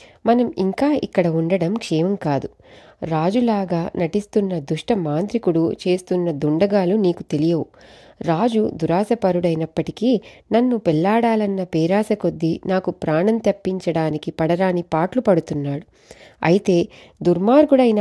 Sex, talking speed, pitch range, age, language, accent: female, 85 wpm, 170-220 Hz, 30-49, Telugu, native